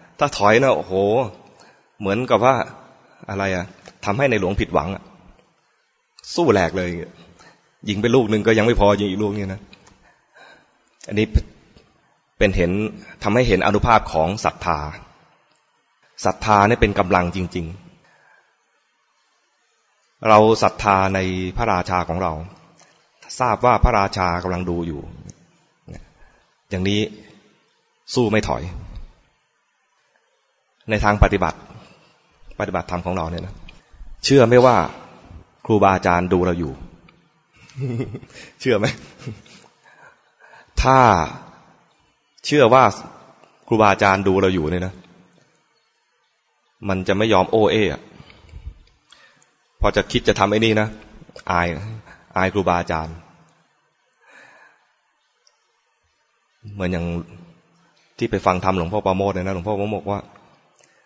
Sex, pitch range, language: male, 90-105 Hz, English